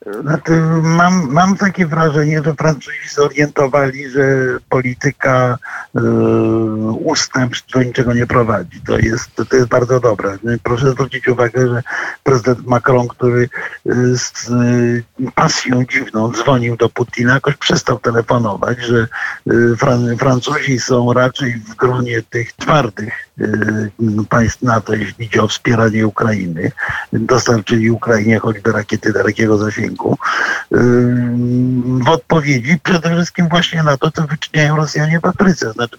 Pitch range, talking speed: 115-140 Hz, 115 wpm